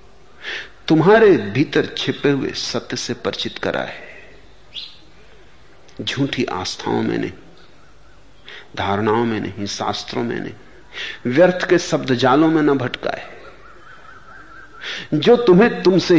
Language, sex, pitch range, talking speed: Hindi, male, 125-180 Hz, 105 wpm